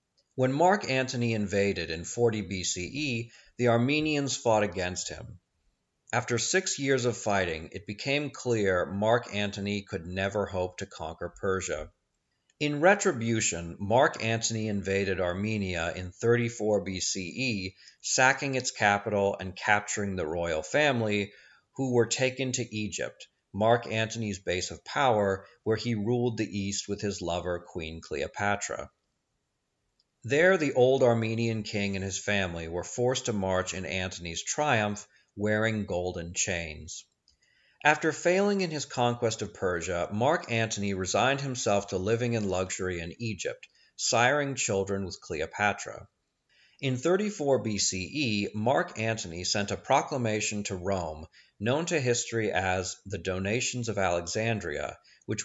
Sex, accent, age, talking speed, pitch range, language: male, American, 40-59, 135 wpm, 95-120 Hz, English